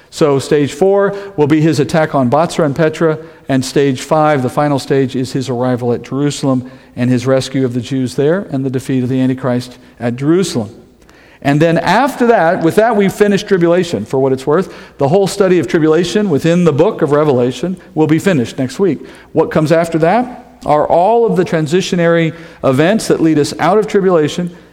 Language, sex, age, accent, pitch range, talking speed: English, male, 50-69, American, 135-170 Hz, 195 wpm